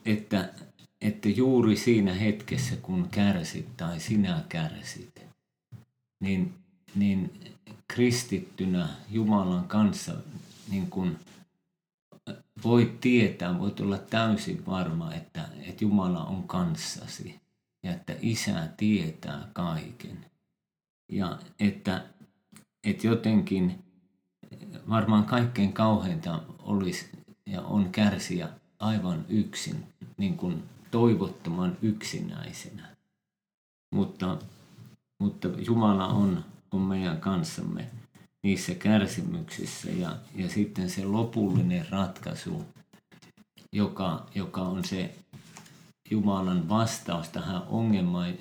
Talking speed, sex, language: 90 wpm, male, Finnish